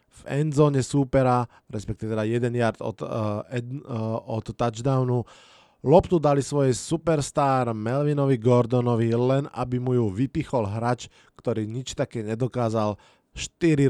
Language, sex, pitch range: Slovak, male, 125-155 Hz